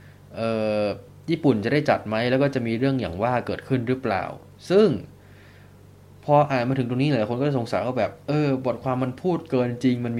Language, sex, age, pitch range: Thai, male, 20-39, 110-135 Hz